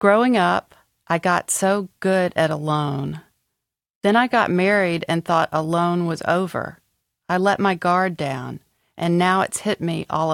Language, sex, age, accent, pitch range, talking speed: English, female, 40-59, American, 160-200 Hz, 165 wpm